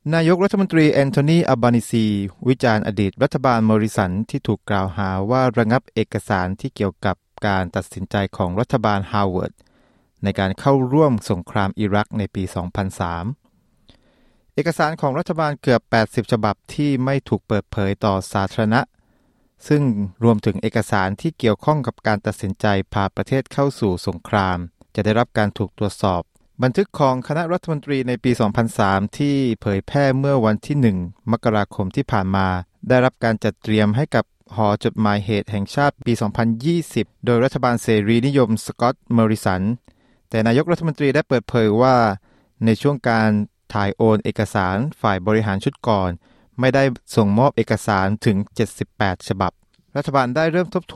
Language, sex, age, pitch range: Thai, male, 20-39, 105-130 Hz